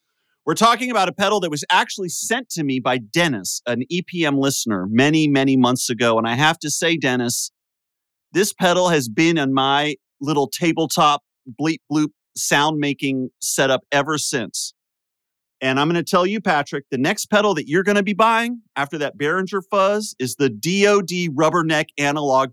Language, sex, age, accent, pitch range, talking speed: English, male, 30-49, American, 130-180 Hz, 175 wpm